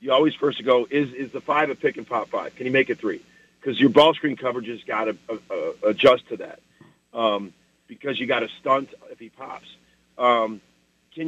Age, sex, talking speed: 40-59, male, 220 wpm